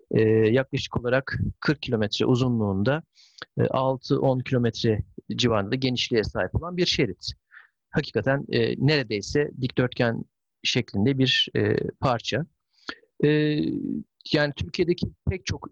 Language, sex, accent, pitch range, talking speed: Turkish, male, native, 110-135 Hz, 90 wpm